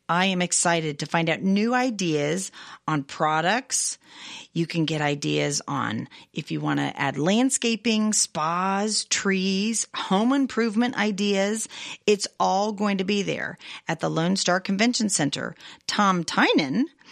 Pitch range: 170-230 Hz